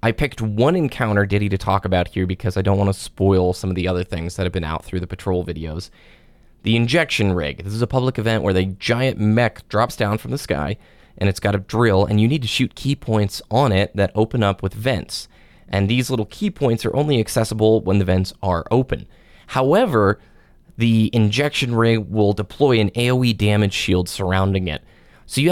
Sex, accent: male, American